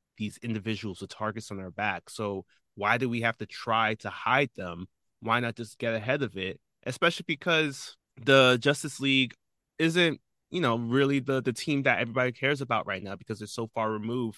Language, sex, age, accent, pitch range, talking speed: English, male, 20-39, American, 105-130 Hz, 195 wpm